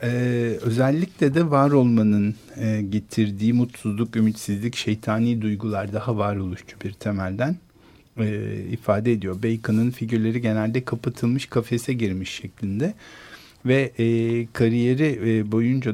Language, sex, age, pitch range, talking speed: Turkish, male, 50-69, 105-130 Hz, 115 wpm